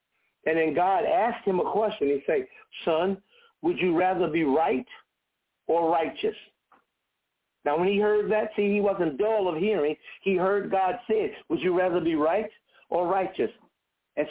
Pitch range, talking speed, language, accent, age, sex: 170-225 Hz, 170 wpm, English, American, 60-79, male